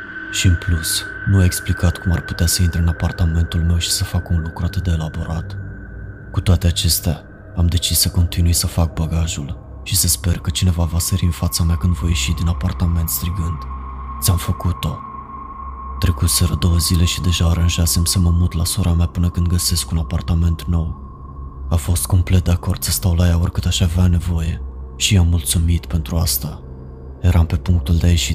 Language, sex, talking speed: Romanian, male, 195 wpm